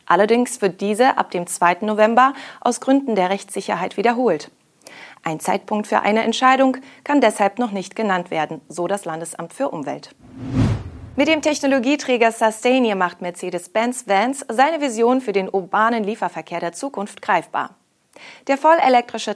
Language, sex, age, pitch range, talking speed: English, female, 30-49, 190-245 Hz, 145 wpm